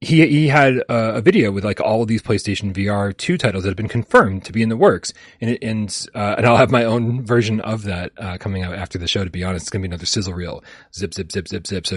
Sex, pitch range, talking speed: male, 100-140 Hz, 290 wpm